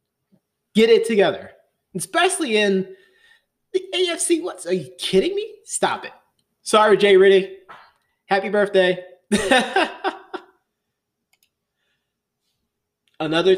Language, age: English, 30-49